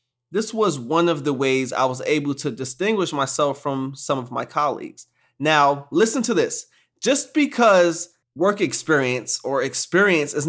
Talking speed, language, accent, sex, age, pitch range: 160 wpm, English, American, male, 20-39, 155-220 Hz